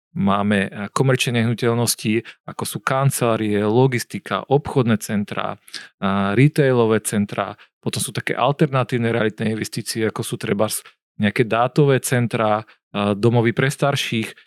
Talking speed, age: 110 wpm, 40-59